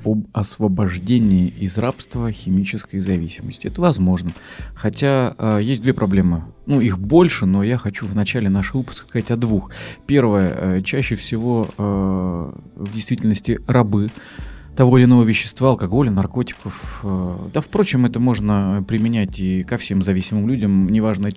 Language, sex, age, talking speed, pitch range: Russian, male, 20-39, 150 wpm, 95-125 Hz